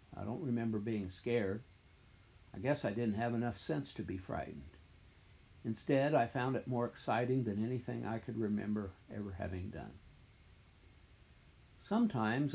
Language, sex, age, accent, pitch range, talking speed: English, male, 60-79, American, 95-120 Hz, 145 wpm